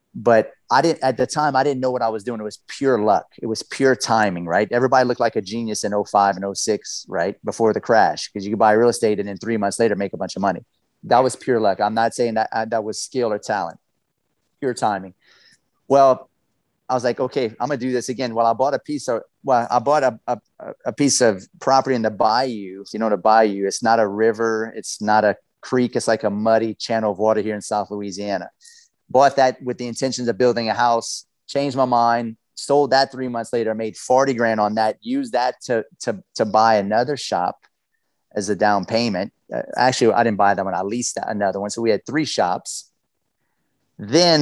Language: English